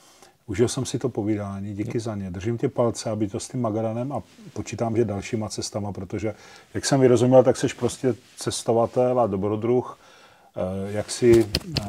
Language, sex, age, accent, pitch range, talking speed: Czech, male, 40-59, native, 100-120 Hz, 165 wpm